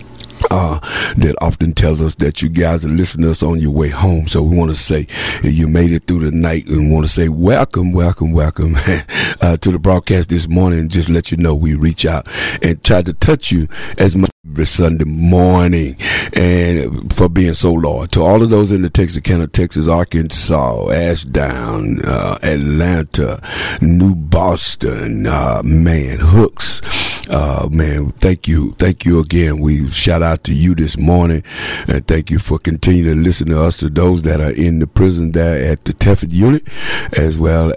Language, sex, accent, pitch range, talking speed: English, male, American, 75-90 Hz, 185 wpm